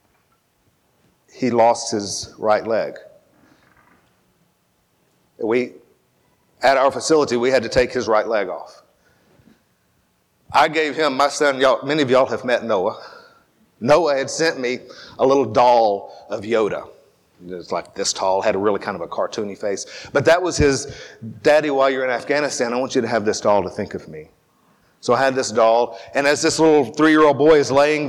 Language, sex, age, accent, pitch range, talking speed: English, male, 50-69, American, 120-150 Hz, 175 wpm